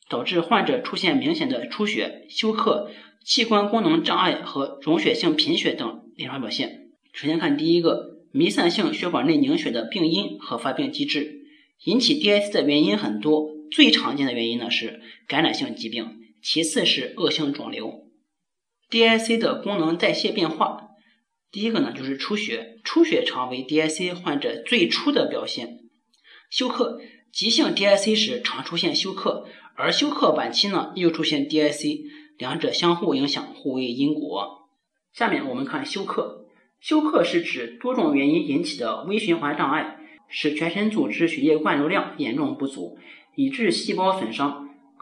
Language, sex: Chinese, male